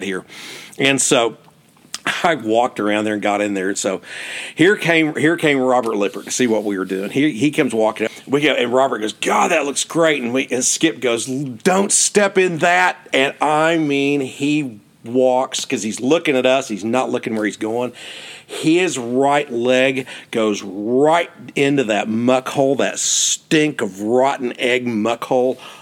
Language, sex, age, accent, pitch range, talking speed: English, male, 50-69, American, 120-170 Hz, 185 wpm